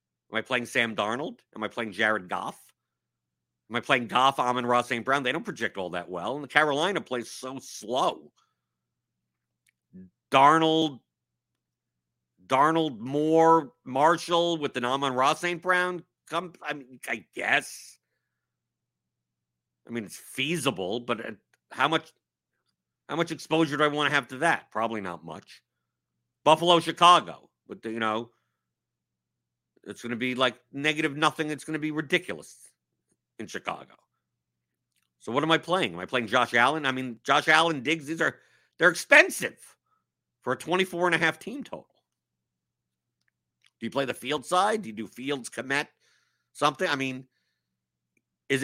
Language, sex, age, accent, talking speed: English, male, 50-69, American, 155 wpm